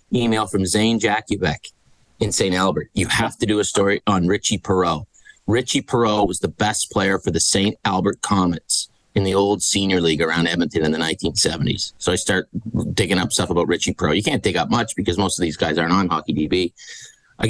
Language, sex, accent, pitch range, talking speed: English, male, American, 90-110 Hz, 205 wpm